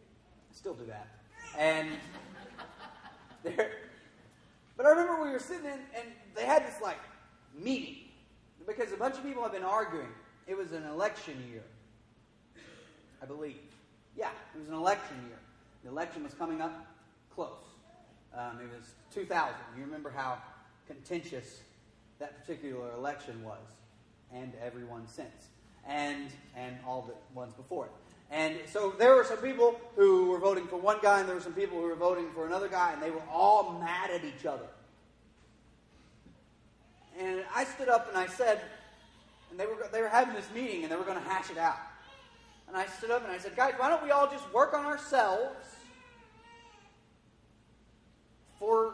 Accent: American